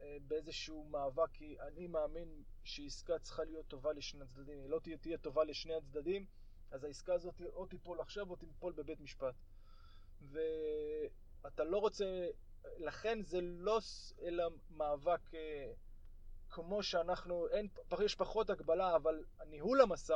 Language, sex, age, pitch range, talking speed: English, male, 20-39, 150-185 Hz, 130 wpm